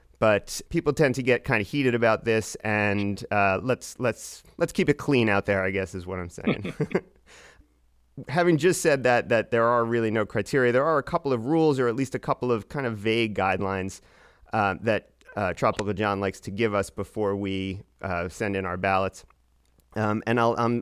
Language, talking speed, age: English, 210 wpm, 30-49